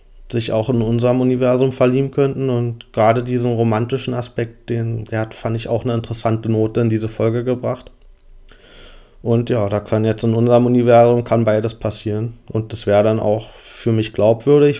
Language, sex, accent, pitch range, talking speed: German, male, German, 110-125 Hz, 180 wpm